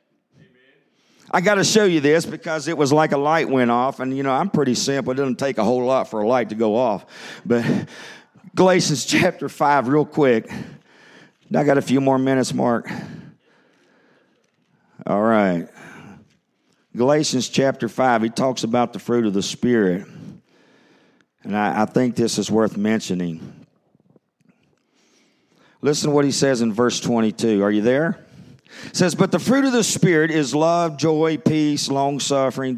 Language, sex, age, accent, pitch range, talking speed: English, male, 50-69, American, 120-160 Hz, 165 wpm